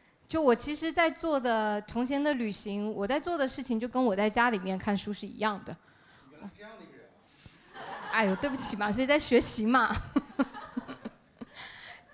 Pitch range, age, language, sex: 210-265 Hz, 20-39, Chinese, female